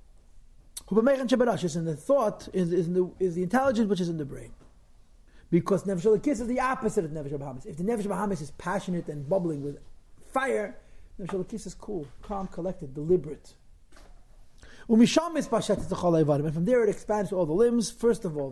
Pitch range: 155-195 Hz